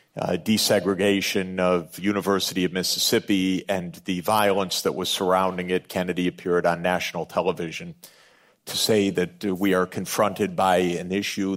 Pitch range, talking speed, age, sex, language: 90-100 Hz, 145 wpm, 50-69, male, English